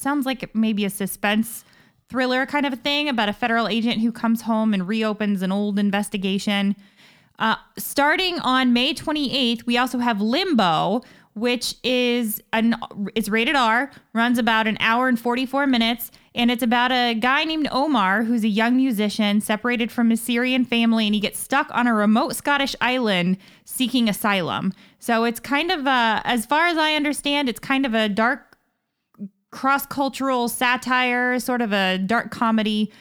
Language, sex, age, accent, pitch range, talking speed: English, female, 20-39, American, 215-255 Hz, 170 wpm